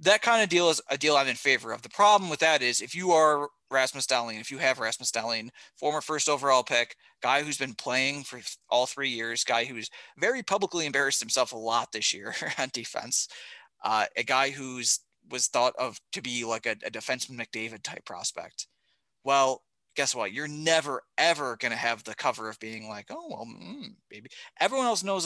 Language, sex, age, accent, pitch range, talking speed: English, male, 30-49, American, 120-155 Hz, 205 wpm